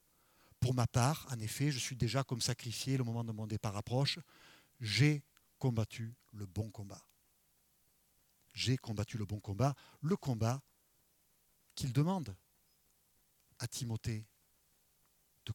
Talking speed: 125 wpm